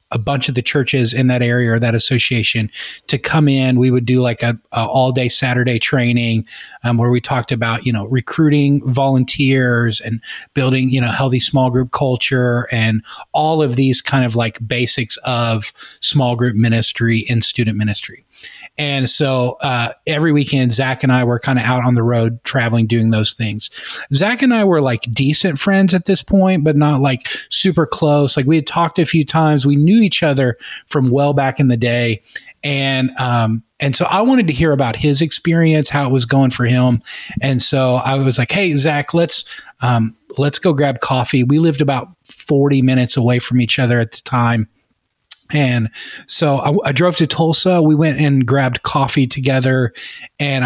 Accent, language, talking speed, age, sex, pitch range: American, English, 190 wpm, 20-39, male, 125-145 Hz